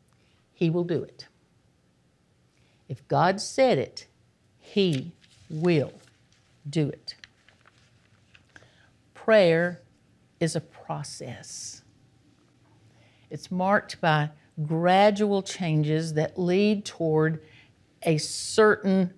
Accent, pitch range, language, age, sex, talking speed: American, 135-180 Hz, English, 60-79, female, 80 wpm